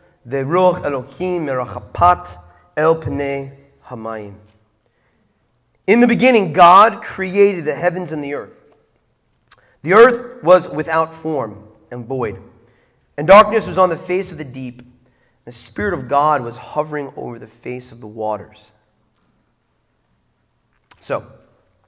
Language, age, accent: English, 30-49, American